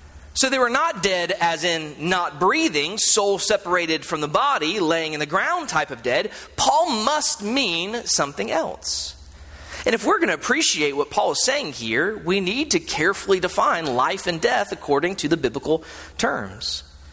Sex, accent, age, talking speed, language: male, American, 30-49, 175 wpm, English